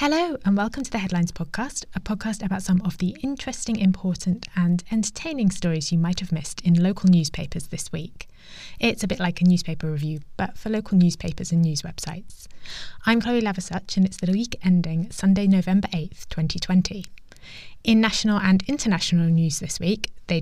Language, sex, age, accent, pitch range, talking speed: English, female, 20-39, British, 170-215 Hz, 180 wpm